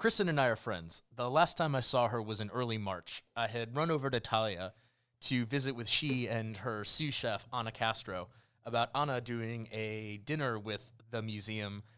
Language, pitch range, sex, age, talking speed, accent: English, 110-125 Hz, male, 30-49, 195 wpm, American